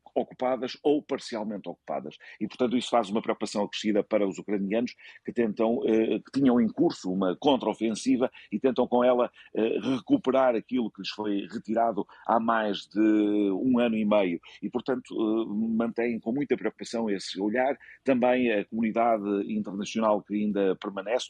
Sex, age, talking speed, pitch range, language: male, 50-69, 150 wpm, 100-120 Hz, Portuguese